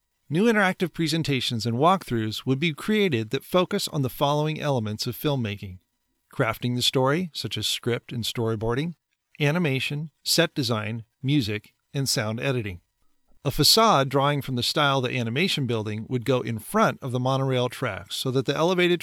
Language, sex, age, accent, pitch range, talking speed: English, male, 40-59, American, 115-150 Hz, 165 wpm